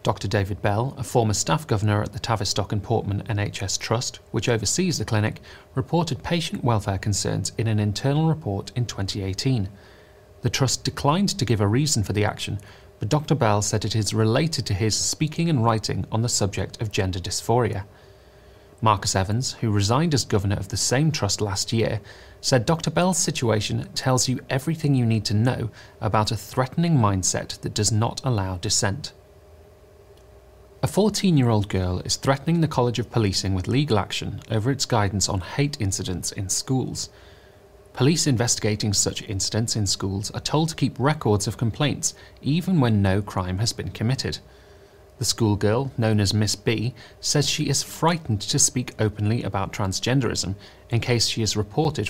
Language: English